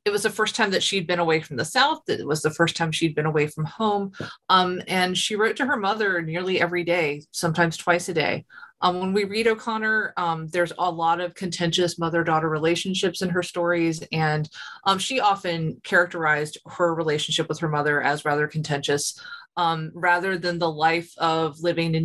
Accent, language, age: American, English, 20-39